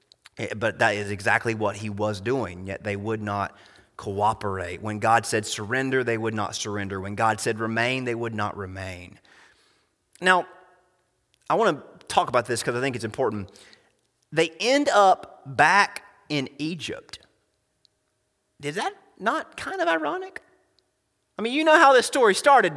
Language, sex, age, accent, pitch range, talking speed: English, male, 30-49, American, 170-270 Hz, 160 wpm